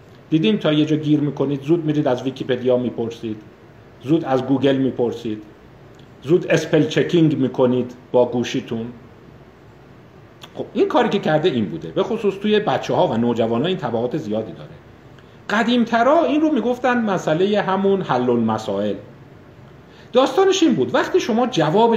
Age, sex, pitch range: 50-69, male, 125-200 Hz